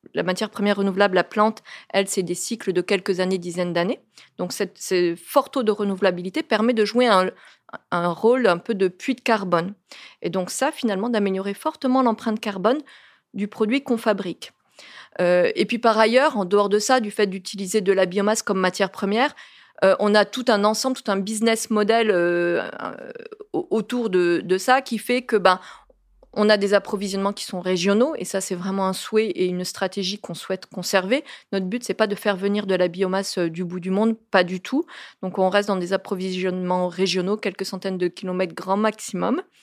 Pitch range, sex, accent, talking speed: 185-230 Hz, female, French, 200 wpm